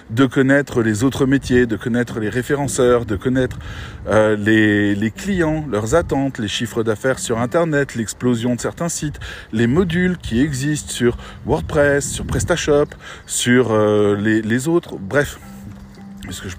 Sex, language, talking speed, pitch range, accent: male, French, 155 wpm, 110-145 Hz, French